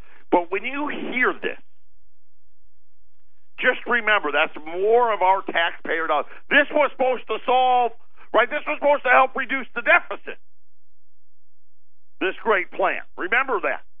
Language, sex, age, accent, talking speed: English, male, 50-69, American, 135 wpm